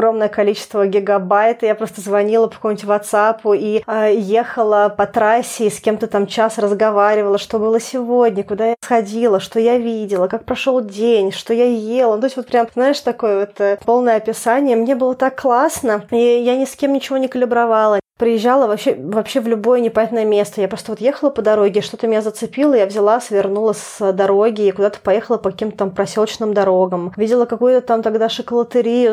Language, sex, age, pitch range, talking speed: Russian, female, 20-39, 215-245 Hz, 190 wpm